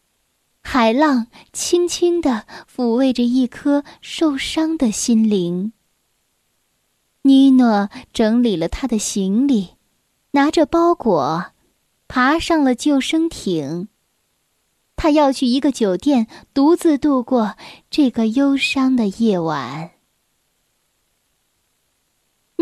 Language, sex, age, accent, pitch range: Chinese, female, 10-29, native, 220-310 Hz